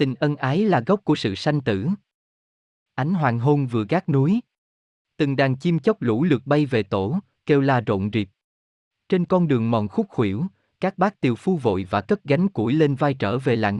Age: 20-39